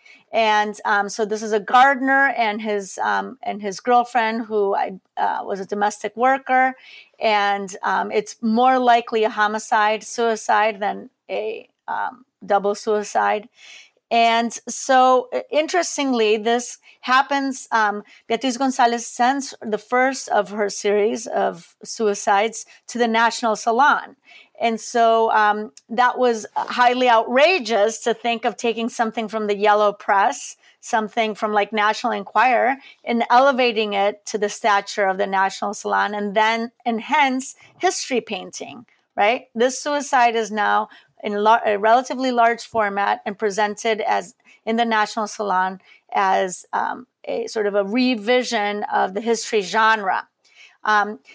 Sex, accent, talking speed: female, American, 140 wpm